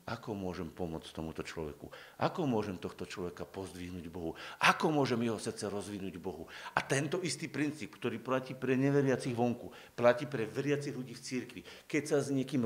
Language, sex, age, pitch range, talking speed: Slovak, male, 50-69, 115-145 Hz, 170 wpm